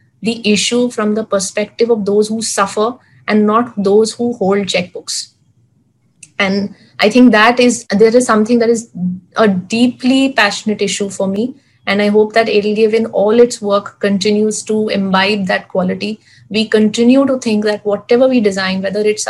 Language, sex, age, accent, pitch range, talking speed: English, female, 30-49, Indian, 195-225 Hz, 170 wpm